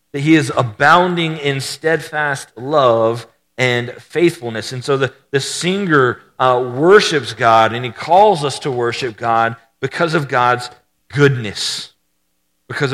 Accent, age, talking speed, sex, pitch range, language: American, 40-59, 130 wpm, male, 120-150 Hz, English